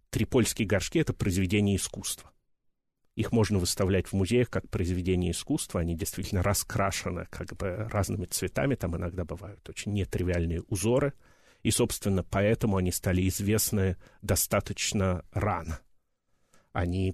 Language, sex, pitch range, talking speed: Russian, male, 90-115 Hz, 125 wpm